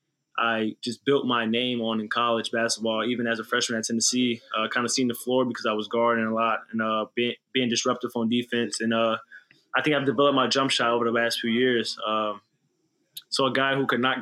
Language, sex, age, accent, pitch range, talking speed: English, male, 20-39, American, 115-125 Hz, 230 wpm